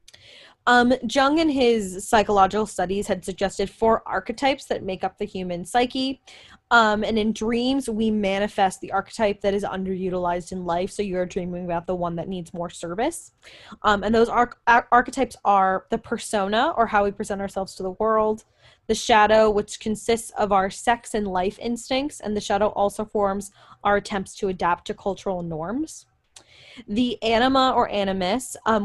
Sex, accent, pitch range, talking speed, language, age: female, American, 190-230 Hz, 170 wpm, English, 10-29